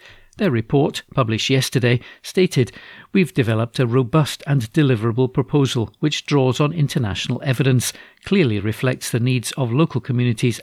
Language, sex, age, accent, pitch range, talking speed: English, male, 50-69, British, 120-145 Hz, 135 wpm